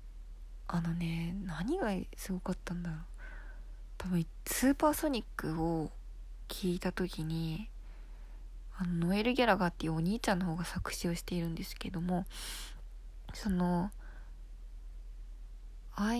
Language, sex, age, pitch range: Japanese, female, 20-39, 170-220 Hz